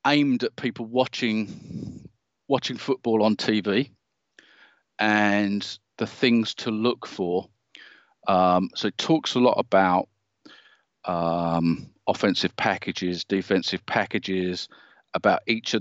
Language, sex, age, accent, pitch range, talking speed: English, male, 40-59, British, 95-115 Hz, 110 wpm